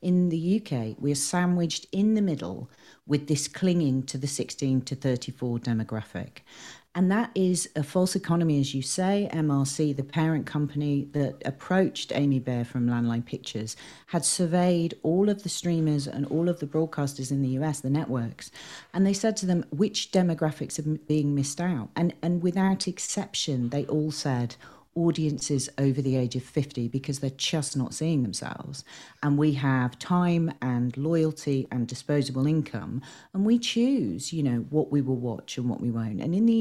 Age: 40-59